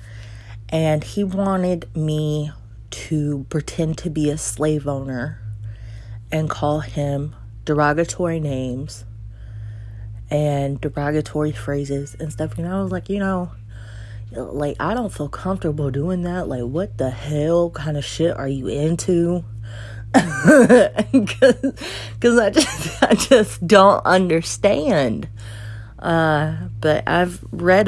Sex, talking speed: female, 120 wpm